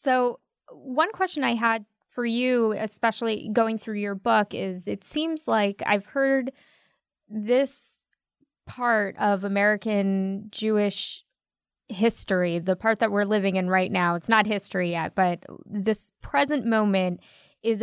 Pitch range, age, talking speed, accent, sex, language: 195-245 Hz, 20-39, 140 wpm, American, female, English